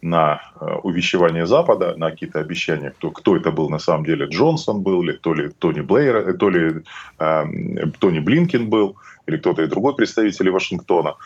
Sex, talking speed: male, 145 wpm